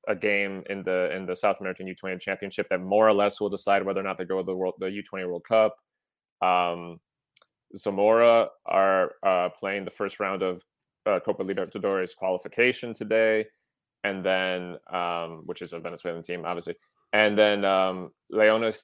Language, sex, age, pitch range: English, male, 20-39, 90-110 Hz